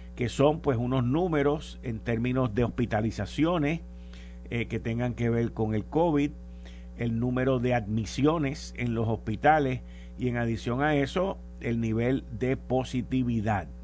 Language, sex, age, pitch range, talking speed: Spanish, male, 50-69, 100-135 Hz, 145 wpm